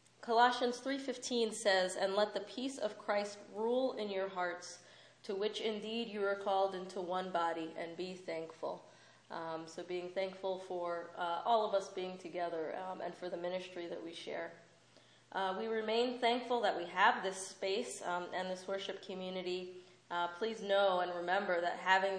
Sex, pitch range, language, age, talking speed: female, 175-205 Hz, English, 20-39, 175 wpm